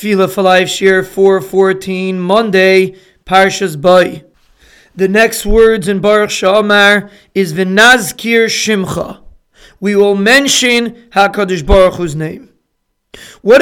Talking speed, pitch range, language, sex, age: 90 wpm, 190-230 Hz, English, male, 40-59